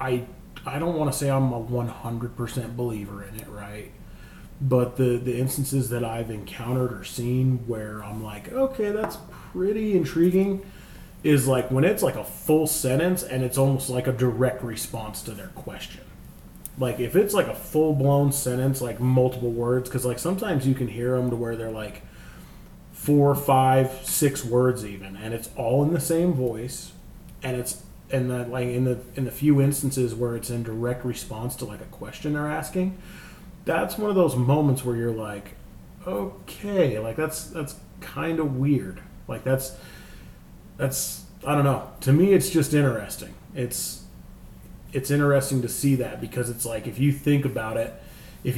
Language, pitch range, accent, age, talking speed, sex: English, 120-145 Hz, American, 30-49, 175 wpm, male